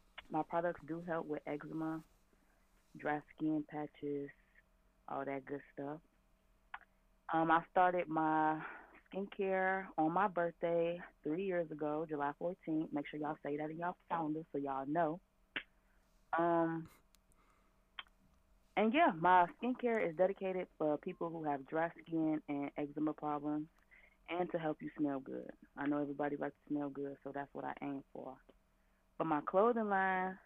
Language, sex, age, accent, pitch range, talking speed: English, female, 20-39, American, 145-170 Hz, 150 wpm